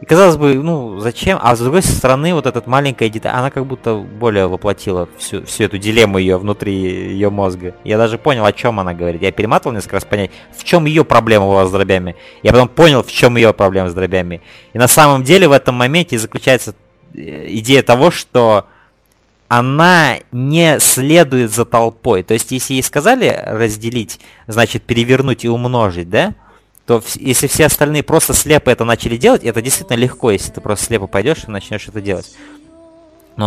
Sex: male